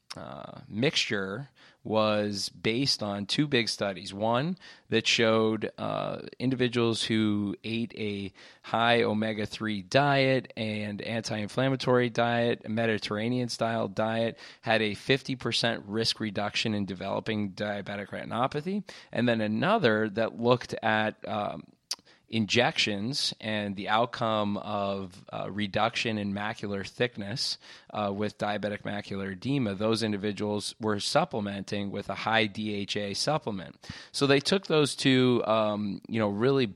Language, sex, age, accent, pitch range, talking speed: English, male, 20-39, American, 100-115 Hz, 125 wpm